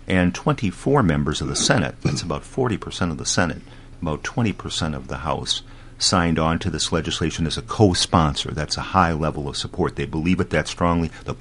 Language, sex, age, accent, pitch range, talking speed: English, male, 50-69, American, 75-90 Hz, 195 wpm